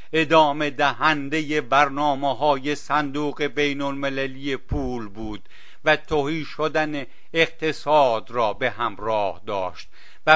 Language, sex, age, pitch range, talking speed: English, male, 50-69, 140-155 Hz, 105 wpm